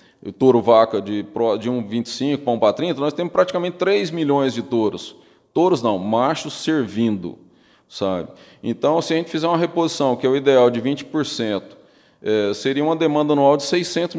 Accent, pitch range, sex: Brazilian, 115-165 Hz, male